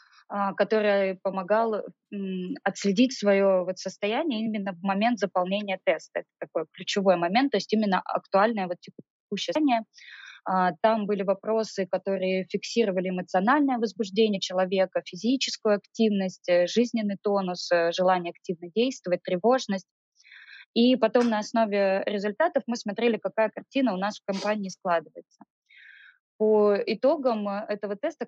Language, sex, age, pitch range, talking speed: Russian, female, 20-39, 185-220 Hz, 115 wpm